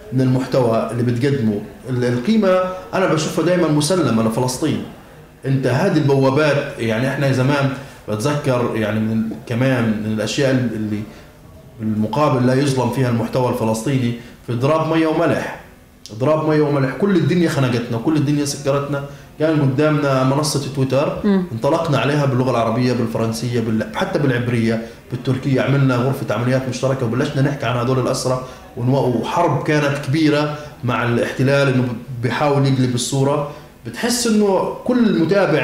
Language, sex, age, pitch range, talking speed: Arabic, male, 30-49, 125-160 Hz, 135 wpm